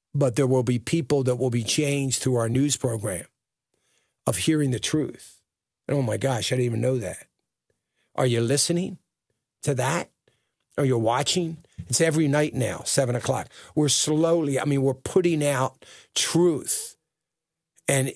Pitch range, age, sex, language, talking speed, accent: 115-145 Hz, 50-69, male, English, 160 wpm, American